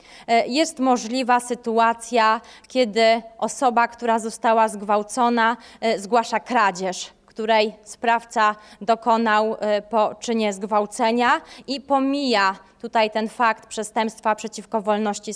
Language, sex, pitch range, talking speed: Polish, female, 210-250 Hz, 95 wpm